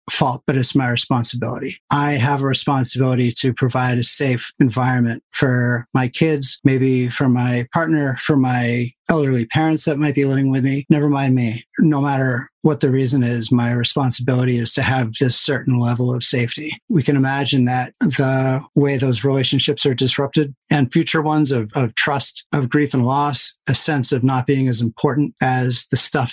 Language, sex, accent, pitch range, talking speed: English, male, American, 125-145 Hz, 180 wpm